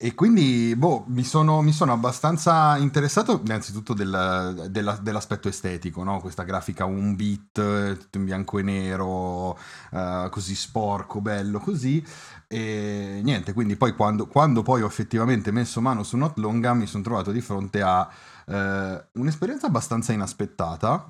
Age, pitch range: 30-49, 100-135 Hz